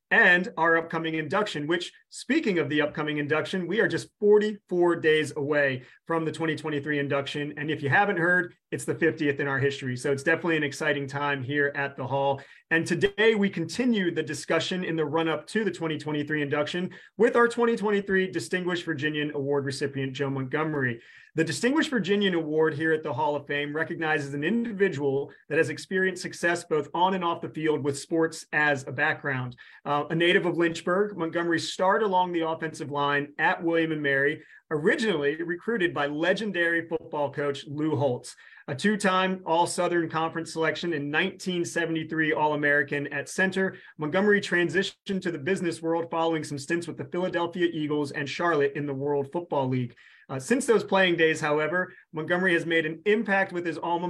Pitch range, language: 145-180 Hz, English